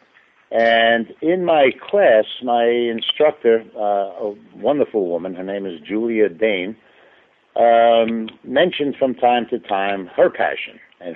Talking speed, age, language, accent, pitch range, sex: 130 wpm, 60-79, English, American, 100-135 Hz, male